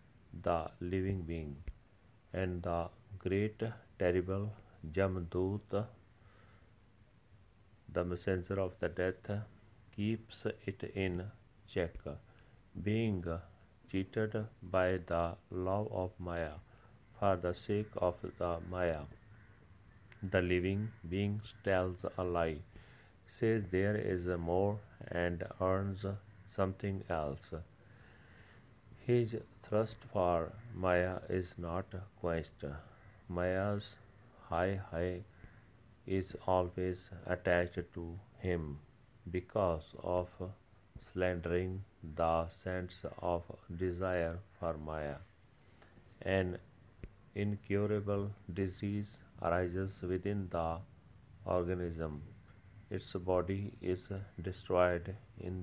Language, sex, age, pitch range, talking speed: Punjabi, male, 50-69, 90-105 Hz, 85 wpm